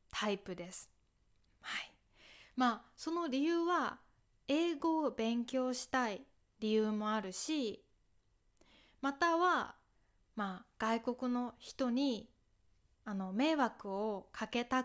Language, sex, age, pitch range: Japanese, female, 20-39, 200-270 Hz